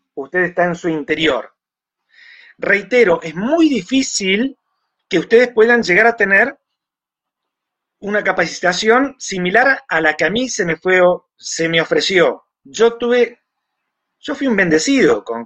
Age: 30-49